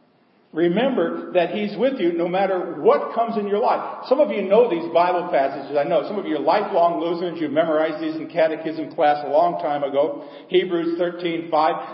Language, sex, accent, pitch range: English, male, American, 160-215 Hz